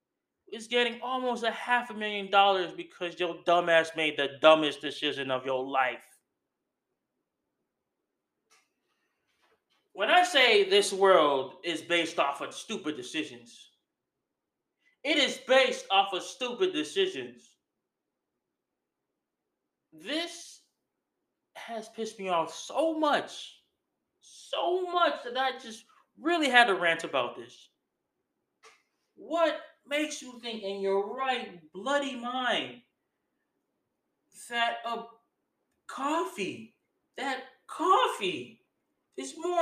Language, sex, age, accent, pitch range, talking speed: English, male, 20-39, American, 210-320 Hz, 105 wpm